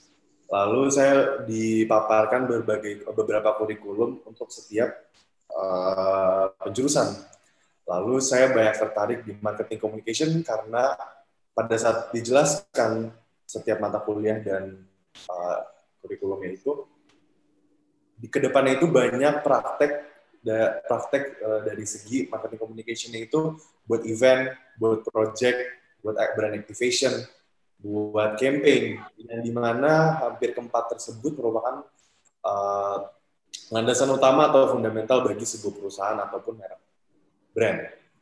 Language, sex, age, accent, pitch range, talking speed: Indonesian, male, 20-39, native, 110-135 Hz, 105 wpm